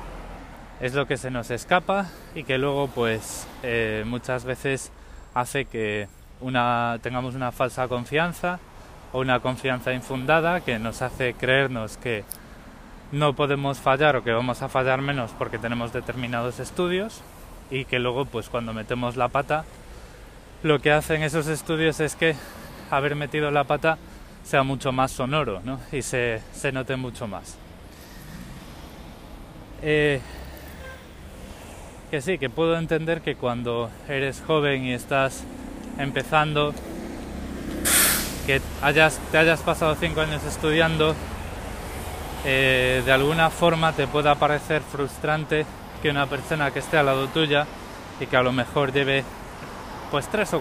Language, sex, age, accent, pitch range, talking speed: Spanish, male, 20-39, Spanish, 120-150 Hz, 140 wpm